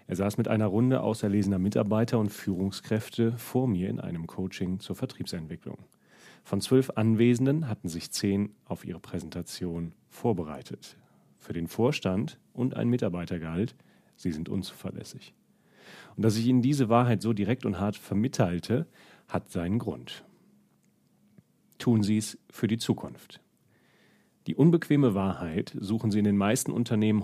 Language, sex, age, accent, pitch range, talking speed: German, male, 40-59, German, 95-120 Hz, 140 wpm